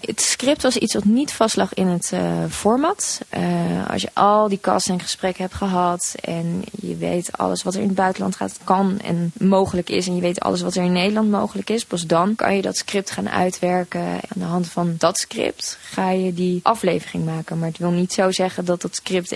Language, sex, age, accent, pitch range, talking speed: Dutch, female, 20-39, Dutch, 175-210 Hz, 225 wpm